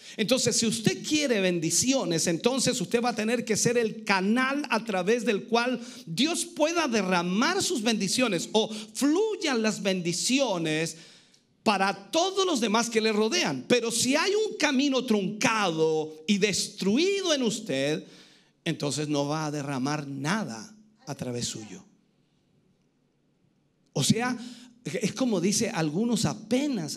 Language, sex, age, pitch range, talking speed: Spanish, male, 50-69, 180-250 Hz, 135 wpm